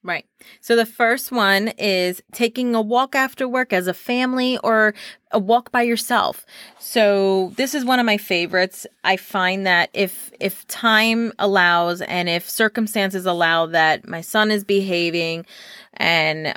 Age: 30-49